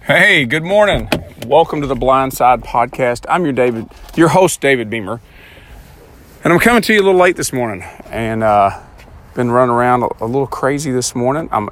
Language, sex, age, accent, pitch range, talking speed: English, male, 40-59, American, 100-130 Hz, 190 wpm